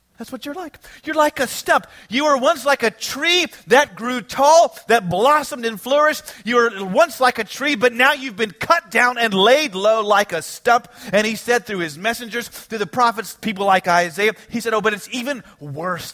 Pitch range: 175-265 Hz